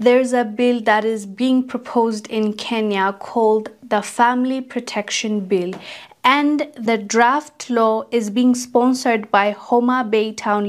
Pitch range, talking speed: 200-240 Hz, 140 wpm